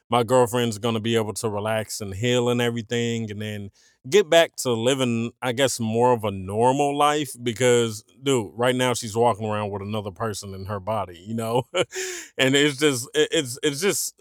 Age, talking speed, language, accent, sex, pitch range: 30-49, 195 wpm, English, American, male, 110-130 Hz